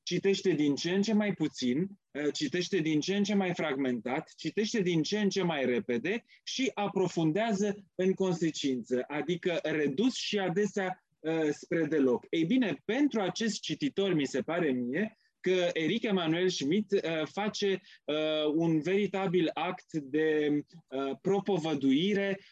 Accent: Romanian